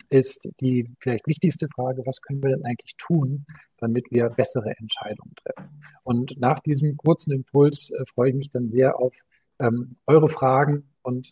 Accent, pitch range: German, 125-145 Hz